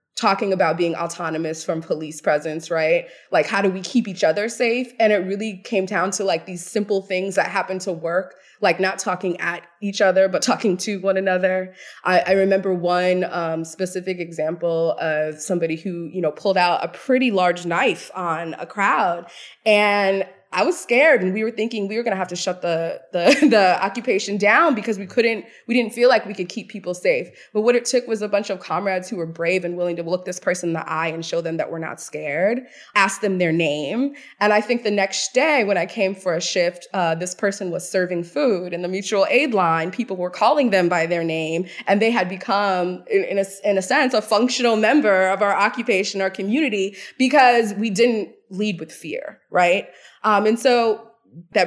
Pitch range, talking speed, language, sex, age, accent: 175-215 Hz, 215 wpm, English, female, 20-39, American